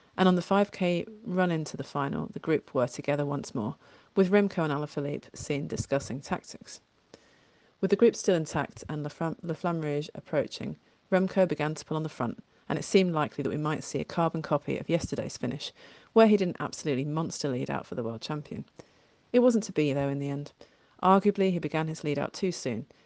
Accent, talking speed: British, 205 wpm